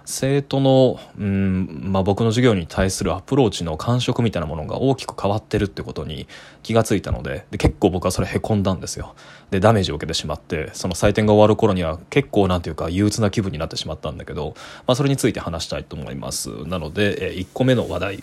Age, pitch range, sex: 20-39, 90-120 Hz, male